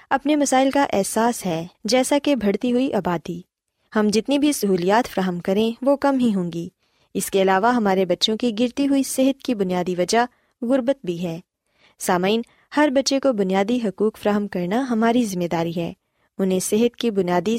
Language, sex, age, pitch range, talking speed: Urdu, female, 20-39, 185-250 Hz, 175 wpm